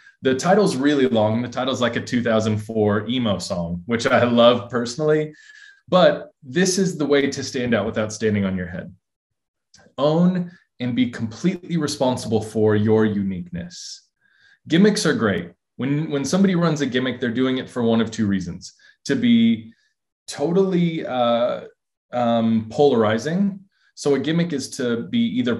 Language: English